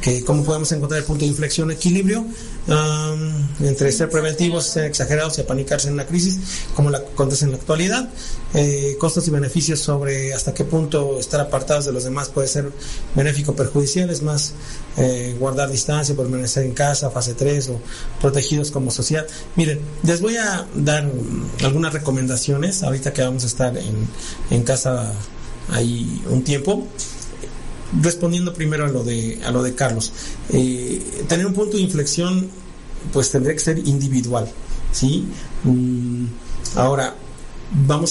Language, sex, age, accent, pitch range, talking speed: Spanish, male, 40-59, Mexican, 130-155 Hz, 155 wpm